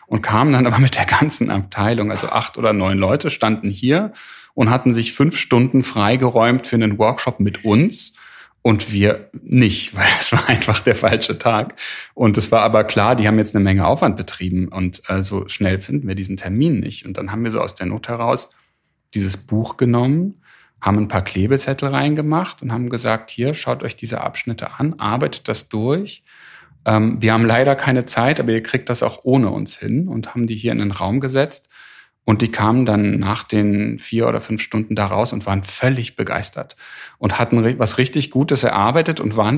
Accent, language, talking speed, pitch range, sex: German, German, 195 wpm, 105-130 Hz, male